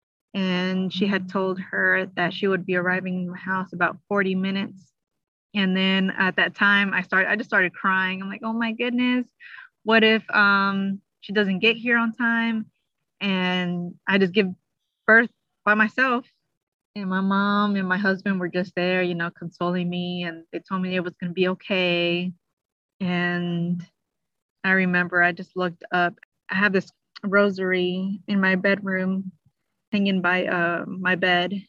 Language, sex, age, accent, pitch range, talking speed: English, female, 20-39, American, 180-205 Hz, 170 wpm